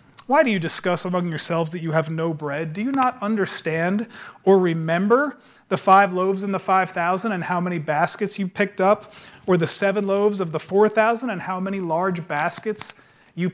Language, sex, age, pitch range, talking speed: English, male, 40-59, 160-210 Hz, 190 wpm